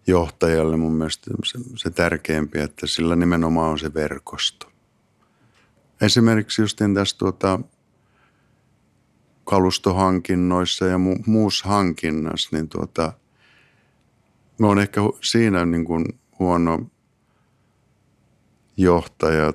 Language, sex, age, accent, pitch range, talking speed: Finnish, male, 50-69, native, 80-110 Hz, 100 wpm